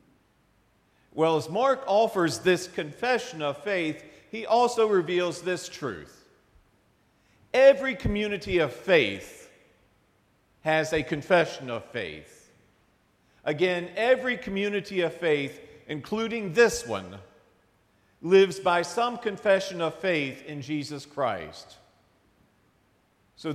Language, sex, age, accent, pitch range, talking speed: English, male, 50-69, American, 155-215 Hz, 100 wpm